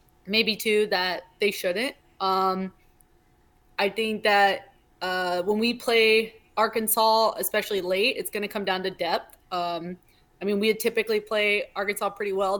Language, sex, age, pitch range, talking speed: English, female, 20-39, 190-220 Hz, 150 wpm